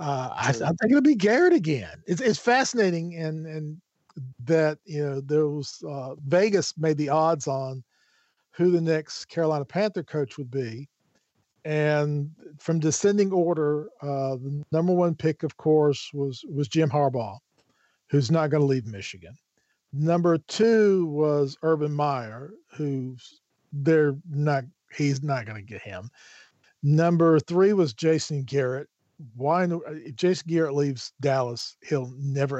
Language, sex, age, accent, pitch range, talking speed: English, male, 50-69, American, 135-160 Hz, 145 wpm